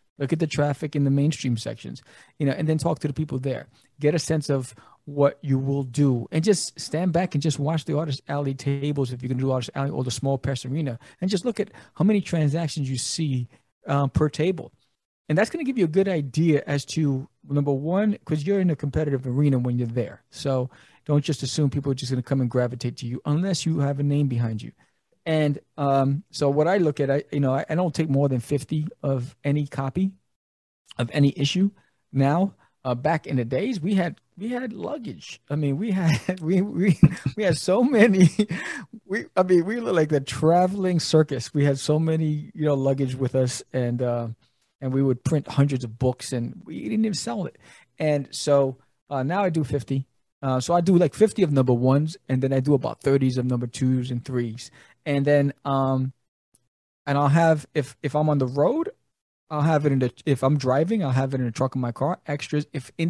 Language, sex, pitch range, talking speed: English, male, 130-160 Hz, 225 wpm